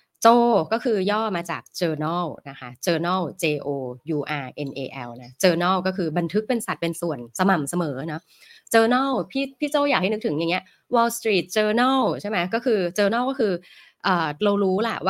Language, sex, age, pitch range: Thai, female, 20-39, 155-200 Hz